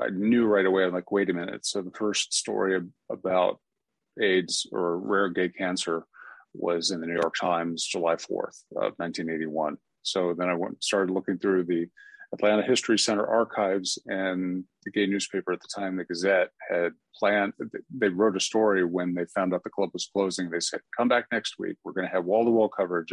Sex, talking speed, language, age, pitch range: male, 195 wpm, English, 40-59, 85-100 Hz